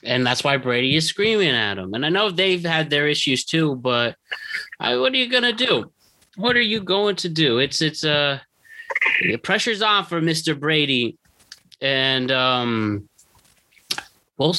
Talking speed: 175 wpm